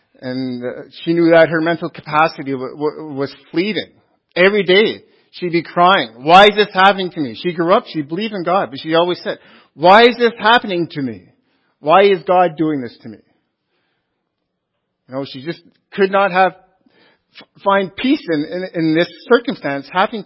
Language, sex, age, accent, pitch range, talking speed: English, male, 50-69, American, 145-190 Hz, 170 wpm